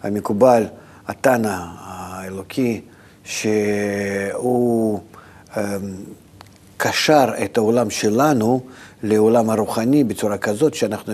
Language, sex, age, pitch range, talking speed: Hebrew, male, 50-69, 100-120 Hz, 75 wpm